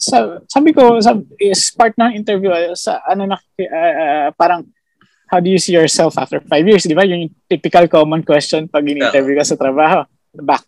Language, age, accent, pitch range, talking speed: Filipino, 20-39, native, 145-200 Hz, 175 wpm